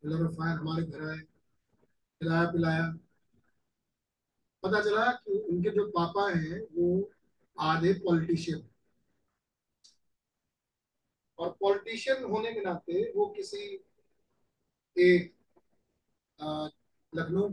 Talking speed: 80 wpm